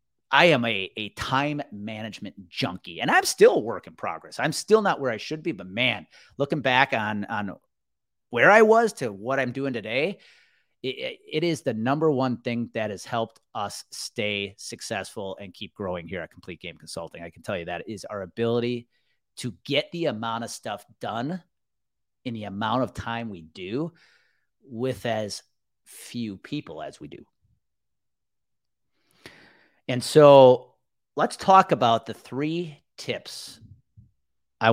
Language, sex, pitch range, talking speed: English, male, 100-135 Hz, 160 wpm